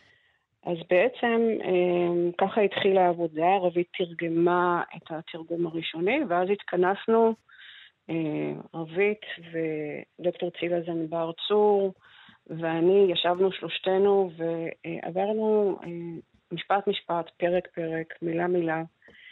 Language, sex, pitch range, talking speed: Hebrew, female, 165-195 Hz, 85 wpm